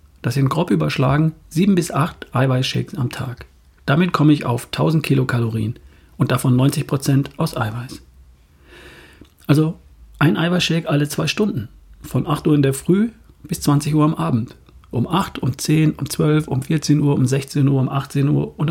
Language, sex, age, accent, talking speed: German, male, 40-59, German, 175 wpm